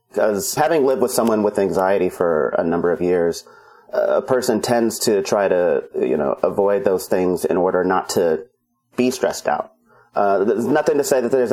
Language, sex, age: English, male, 30-49